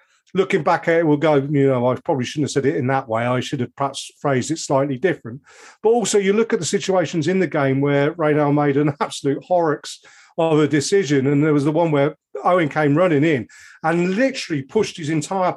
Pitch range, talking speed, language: 140-185 Hz, 225 wpm, English